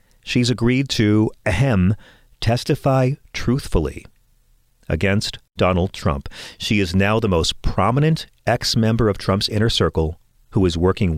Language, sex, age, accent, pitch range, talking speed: English, male, 40-59, American, 90-120 Hz, 130 wpm